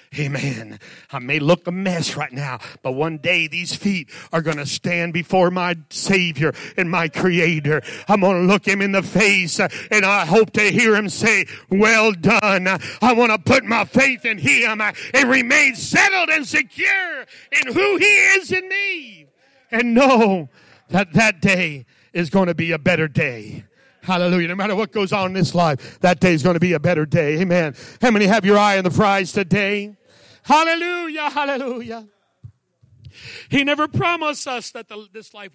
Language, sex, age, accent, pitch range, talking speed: English, male, 50-69, American, 140-210 Hz, 180 wpm